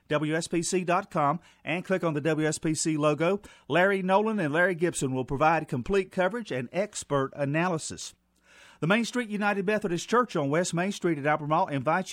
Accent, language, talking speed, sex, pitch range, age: American, English, 160 wpm, male, 150-185 Hz, 40-59